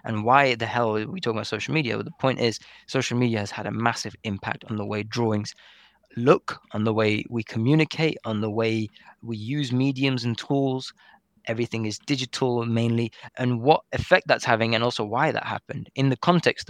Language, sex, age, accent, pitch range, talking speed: English, male, 20-39, British, 110-130 Hz, 200 wpm